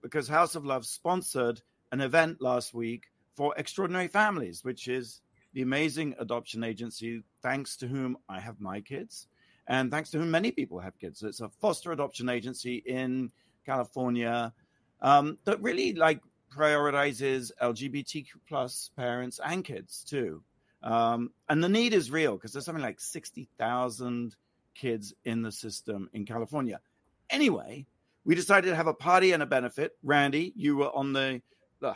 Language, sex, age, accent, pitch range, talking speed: English, male, 50-69, British, 120-160 Hz, 160 wpm